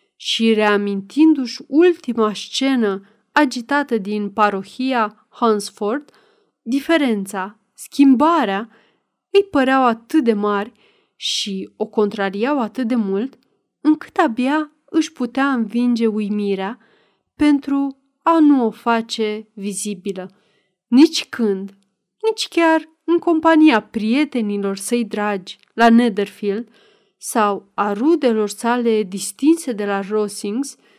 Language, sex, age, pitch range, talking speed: Romanian, female, 30-49, 210-275 Hz, 100 wpm